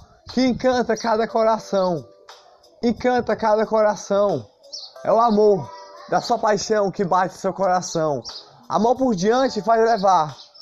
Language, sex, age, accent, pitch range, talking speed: Portuguese, male, 20-39, Brazilian, 170-225 Hz, 125 wpm